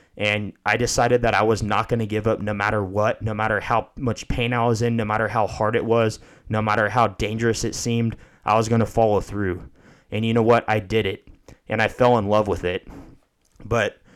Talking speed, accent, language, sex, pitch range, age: 235 wpm, American, English, male, 110-120 Hz, 20-39